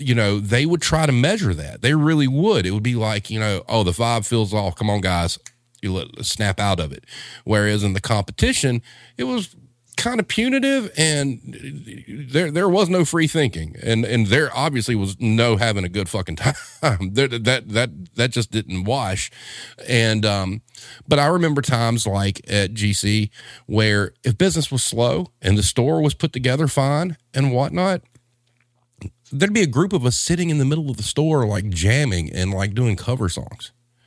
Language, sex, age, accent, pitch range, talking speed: English, male, 40-59, American, 105-140 Hz, 190 wpm